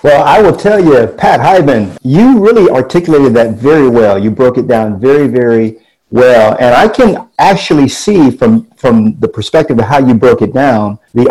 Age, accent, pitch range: 50-69, American, 110-145 Hz